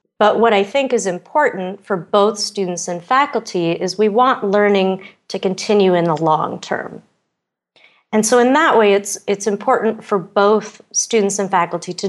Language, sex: English, female